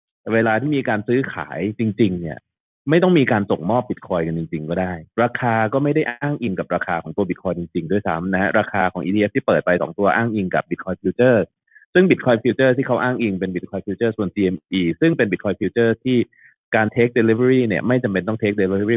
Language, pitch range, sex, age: Thai, 95-125 Hz, male, 20-39